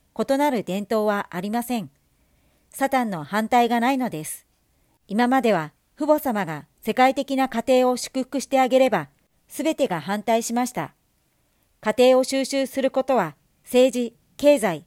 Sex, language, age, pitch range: male, Japanese, 50-69, 200-265 Hz